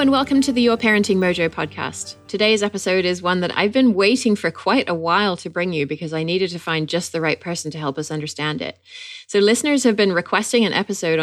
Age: 30-49